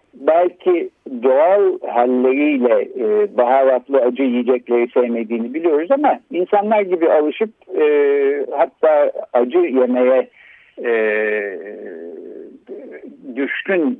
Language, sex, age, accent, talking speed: Turkish, male, 60-79, native, 75 wpm